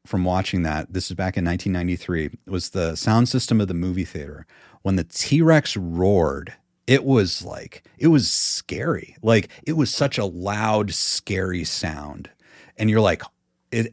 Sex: male